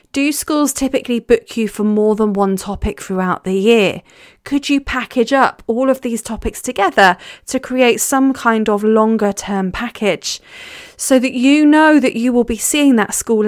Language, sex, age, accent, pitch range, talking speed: English, female, 30-49, British, 195-255 Hz, 185 wpm